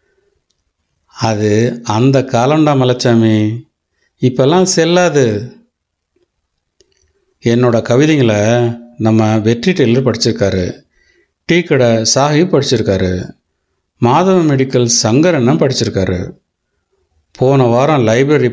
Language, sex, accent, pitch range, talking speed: Tamil, male, native, 110-145 Hz, 70 wpm